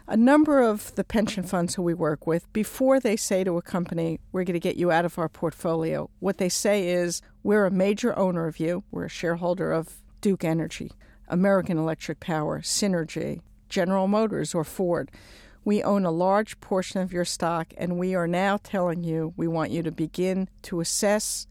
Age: 50-69